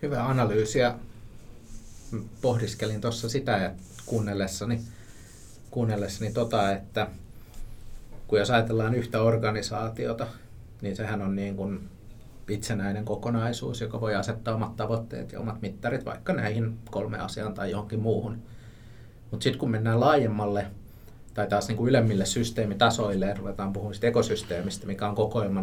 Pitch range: 105-115 Hz